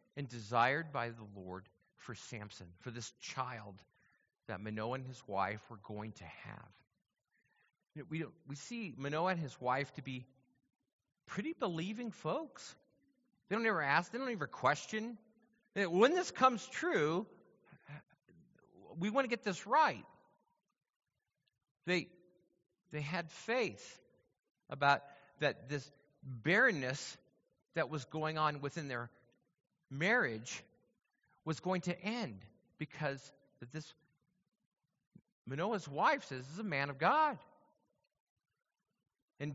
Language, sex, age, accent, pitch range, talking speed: English, male, 50-69, American, 130-200 Hz, 120 wpm